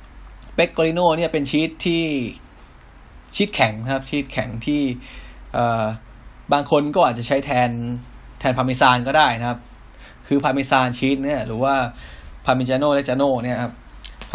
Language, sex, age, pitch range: Thai, male, 20-39, 115-140 Hz